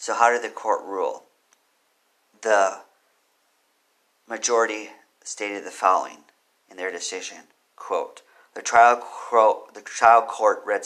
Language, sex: English, male